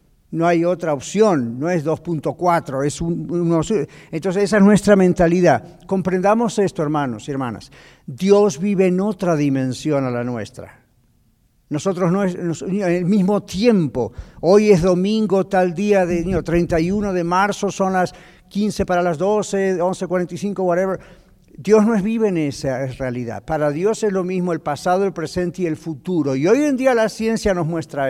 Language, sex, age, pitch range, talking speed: Spanish, male, 50-69, 150-190 Hz, 175 wpm